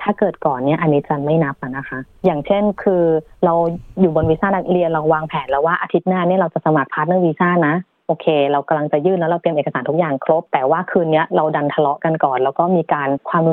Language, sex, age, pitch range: Thai, female, 20-39, 150-180 Hz